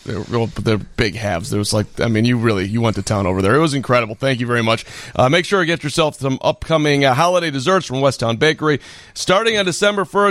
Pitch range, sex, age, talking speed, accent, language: 115-150 Hz, male, 40-59, 235 wpm, American, English